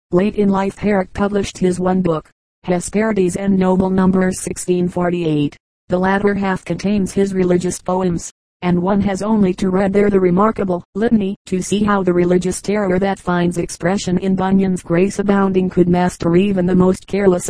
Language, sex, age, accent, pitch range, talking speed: English, female, 40-59, American, 180-195 Hz, 170 wpm